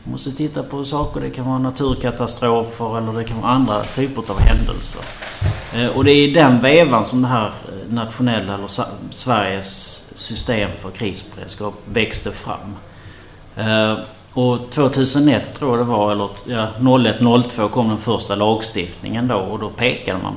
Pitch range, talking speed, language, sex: 100-125 Hz, 155 wpm, Swedish, male